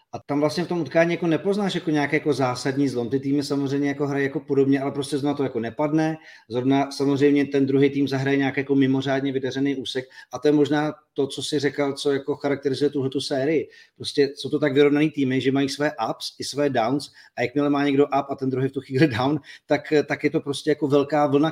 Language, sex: Czech, male